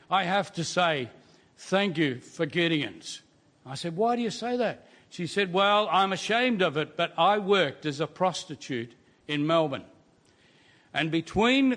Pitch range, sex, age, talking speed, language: 160-200 Hz, male, 60-79, 165 wpm, English